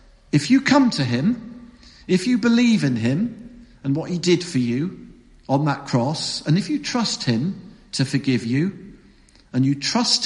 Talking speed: 175 wpm